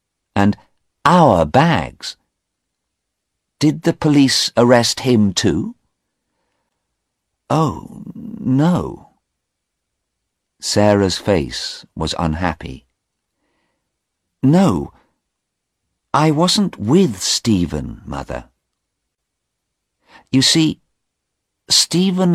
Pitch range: 85-145 Hz